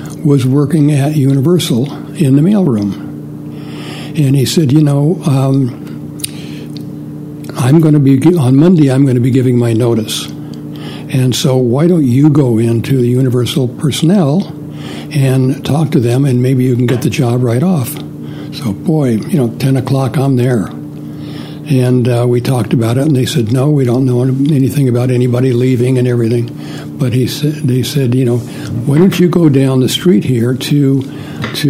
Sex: male